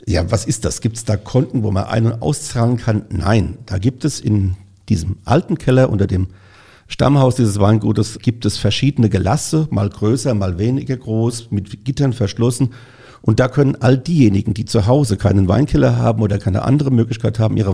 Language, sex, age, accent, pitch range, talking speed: German, male, 50-69, German, 105-130 Hz, 190 wpm